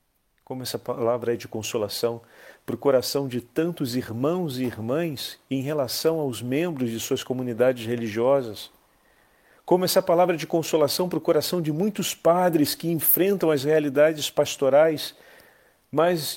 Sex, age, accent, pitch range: male, 40-59, Brazilian, 125-170 Hz